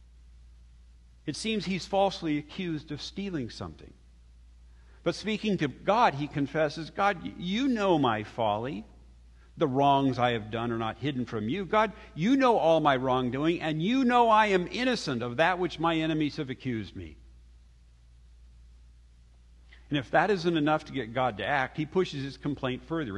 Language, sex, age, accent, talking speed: English, male, 50-69, American, 165 wpm